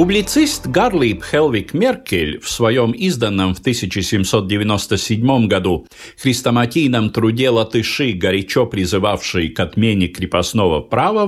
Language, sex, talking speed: Russian, male, 100 wpm